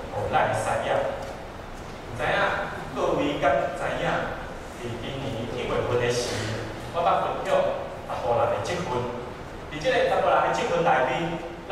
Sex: male